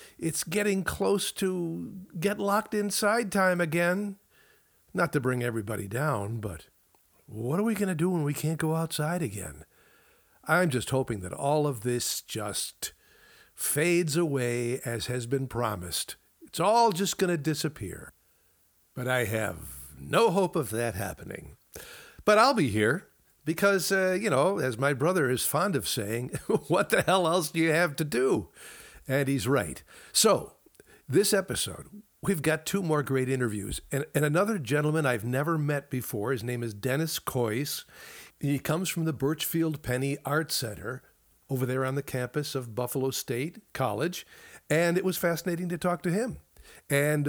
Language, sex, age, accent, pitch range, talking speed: English, male, 60-79, American, 125-175 Hz, 160 wpm